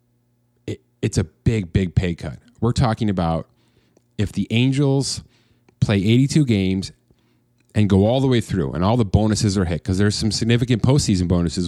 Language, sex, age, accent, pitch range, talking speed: English, male, 30-49, American, 90-120 Hz, 170 wpm